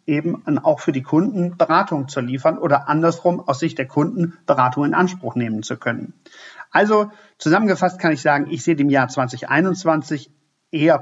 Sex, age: male, 50-69